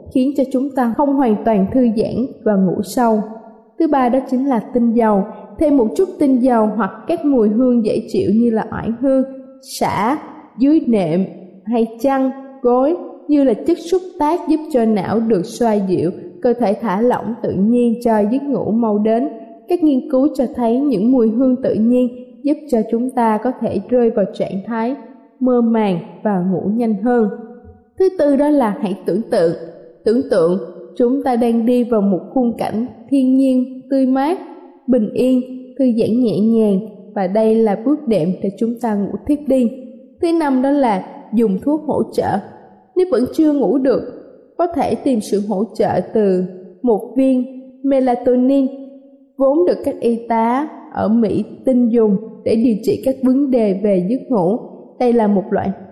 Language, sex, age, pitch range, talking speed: Vietnamese, female, 20-39, 220-265 Hz, 185 wpm